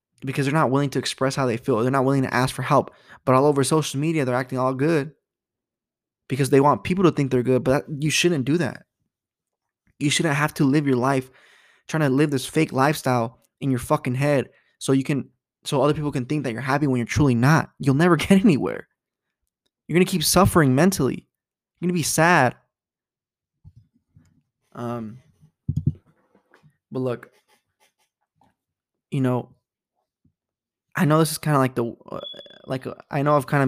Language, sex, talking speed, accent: English, male, 190 wpm, American